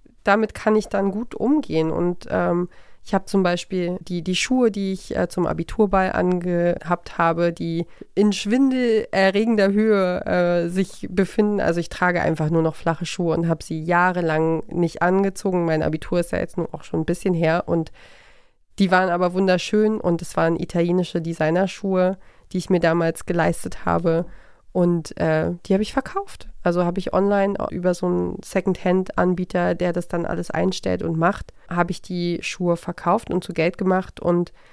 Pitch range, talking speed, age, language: 170-195 Hz, 175 wpm, 30-49, German